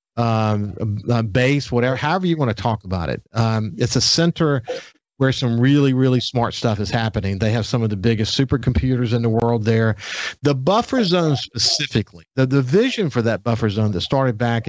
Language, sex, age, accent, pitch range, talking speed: English, male, 50-69, American, 110-145 Hz, 190 wpm